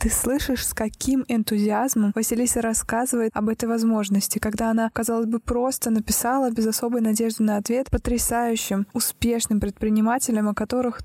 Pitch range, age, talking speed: 220-245 Hz, 20-39, 140 wpm